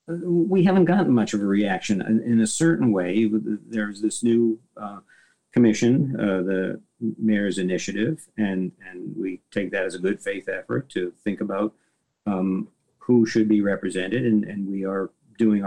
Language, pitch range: English, 105-120 Hz